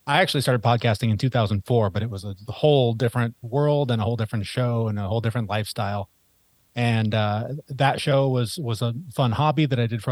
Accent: American